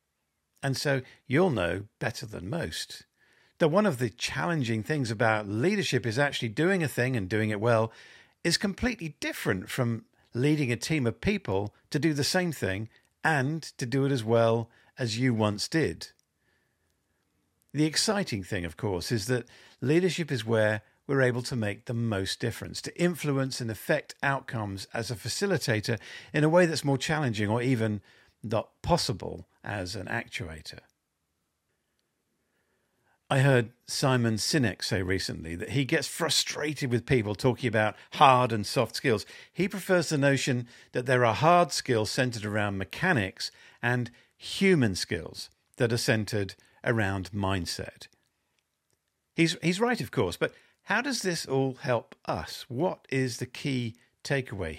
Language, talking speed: English, 155 wpm